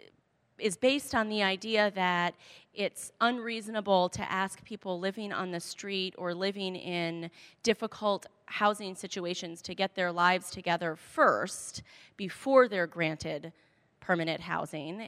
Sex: female